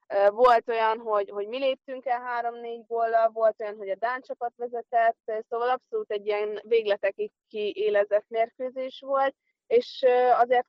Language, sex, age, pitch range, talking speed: Hungarian, female, 20-39, 215-245 Hz, 150 wpm